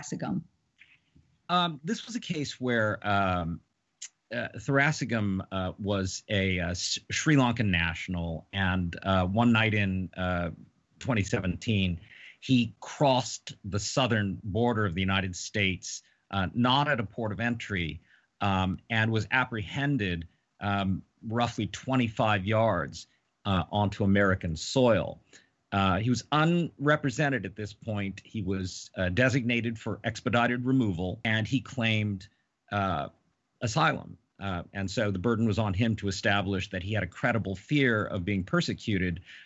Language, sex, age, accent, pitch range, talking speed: English, male, 40-59, American, 95-120 Hz, 135 wpm